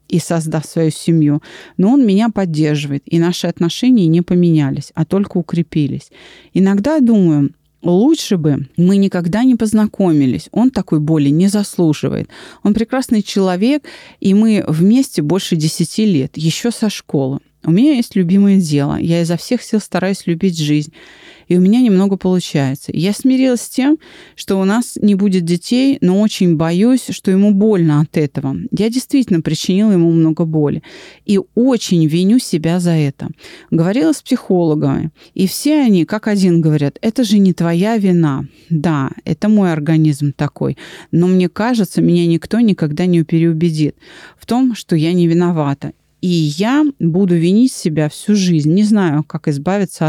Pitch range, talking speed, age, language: 160-215 Hz, 160 wpm, 30-49, Russian